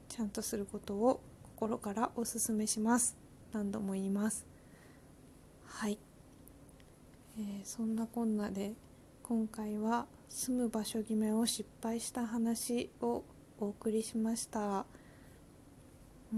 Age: 20-39